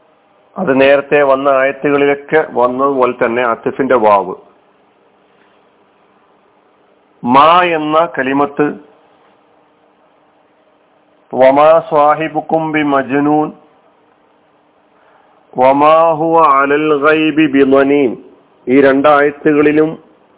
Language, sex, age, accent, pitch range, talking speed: Malayalam, male, 40-59, native, 140-165 Hz, 40 wpm